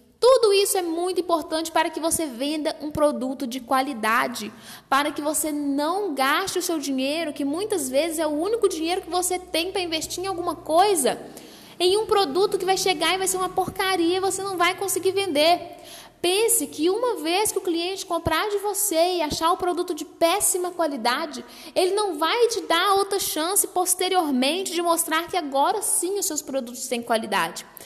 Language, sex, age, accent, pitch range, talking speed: Portuguese, female, 10-29, Brazilian, 310-390 Hz, 190 wpm